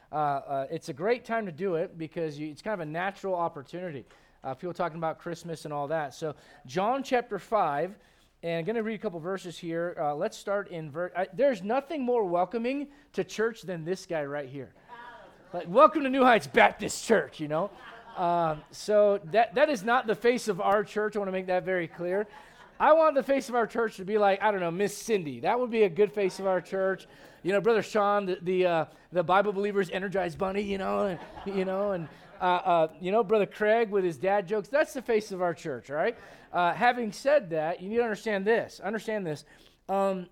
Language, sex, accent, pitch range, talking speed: English, male, American, 175-220 Hz, 225 wpm